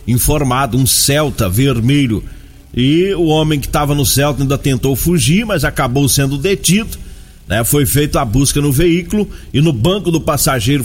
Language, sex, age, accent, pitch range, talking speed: Portuguese, male, 40-59, Brazilian, 125-160 Hz, 165 wpm